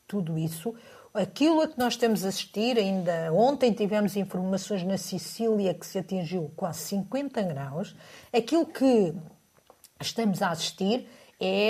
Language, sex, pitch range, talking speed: Portuguese, female, 170-225 Hz, 140 wpm